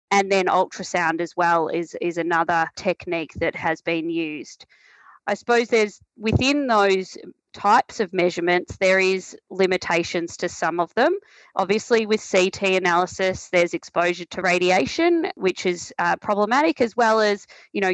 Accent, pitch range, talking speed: Australian, 175-200 Hz, 150 wpm